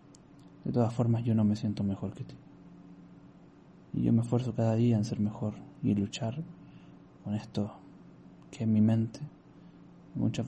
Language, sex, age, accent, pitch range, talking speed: Spanish, male, 20-39, Argentinian, 105-120 Hz, 160 wpm